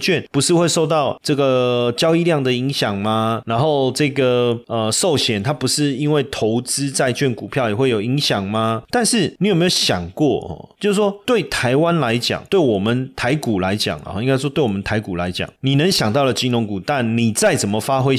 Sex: male